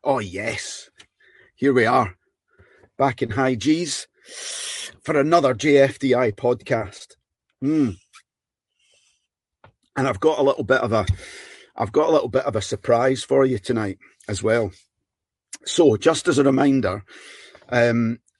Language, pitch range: English, 105-130 Hz